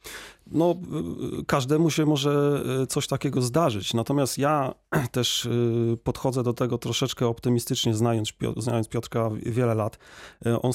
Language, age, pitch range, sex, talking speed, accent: Polish, 30-49, 110-125 Hz, male, 110 wpm, native